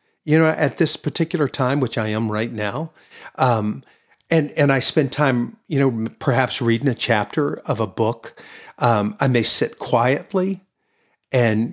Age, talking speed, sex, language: 50-69, 165 wpm, male, English